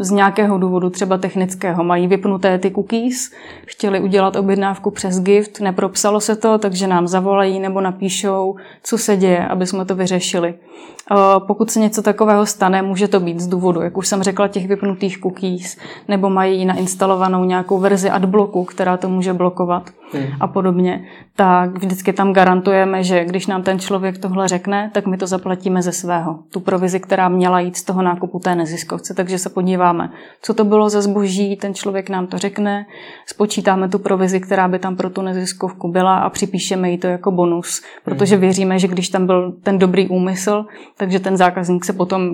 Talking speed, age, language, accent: 180 wpm, 20-39, Czech, native